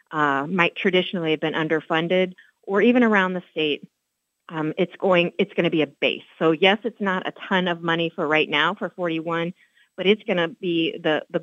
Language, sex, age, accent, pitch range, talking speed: English, female, 30-49, American, 150-175 Hz, 210 wpm